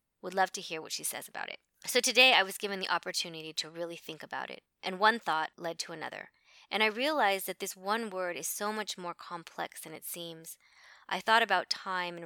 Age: 20-39